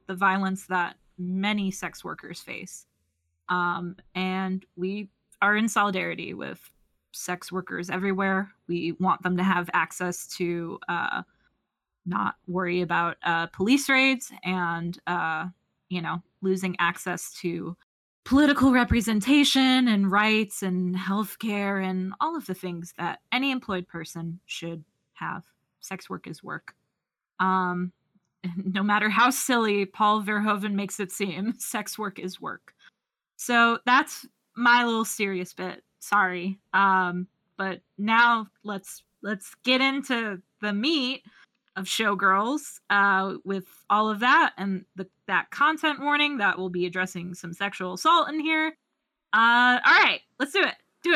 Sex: female